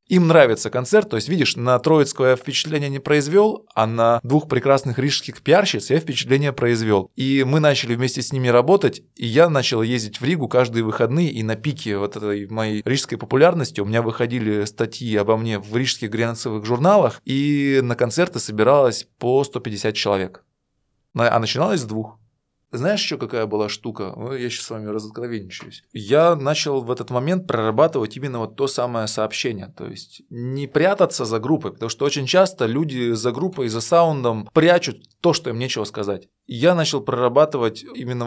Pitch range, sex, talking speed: 115-145 Hz, male, 175 wpm